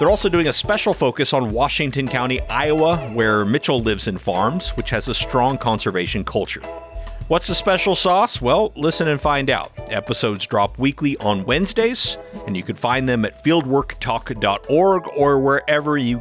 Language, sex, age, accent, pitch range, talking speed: English, male, 40-59, American, 110-150 Hz, 165 wpm